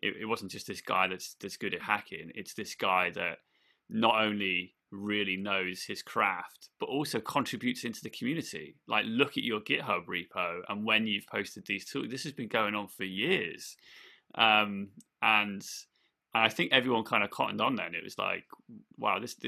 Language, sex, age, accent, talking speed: English, male, 20-39, British, 185 wpm